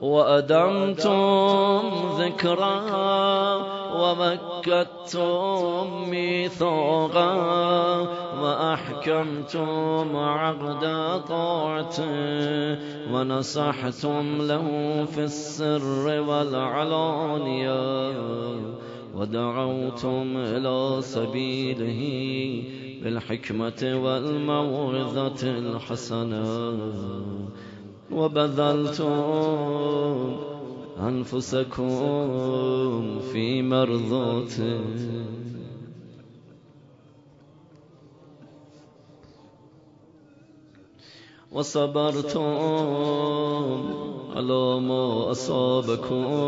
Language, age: Persian, 30-49